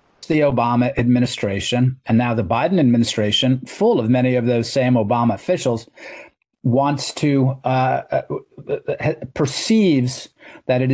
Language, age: English, 40-59